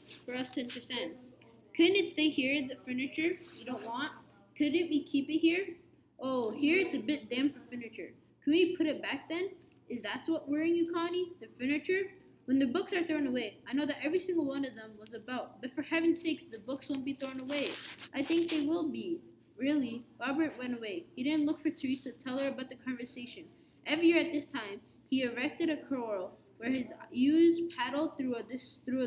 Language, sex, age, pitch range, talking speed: English, female, 20-39, 250-310 Hz, 205 wpm